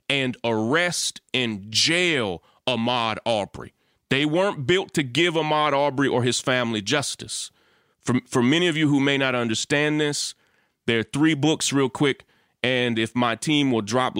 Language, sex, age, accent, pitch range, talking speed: English, male, 30-49, American, 115-150 Hz, 165 wpm